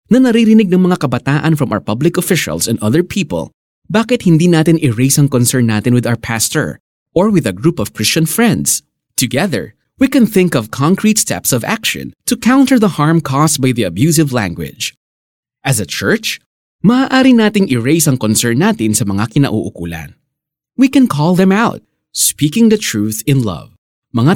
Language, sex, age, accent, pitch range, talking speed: Filipino, male, 20-39, native, 115-180 Hz, 170 wpm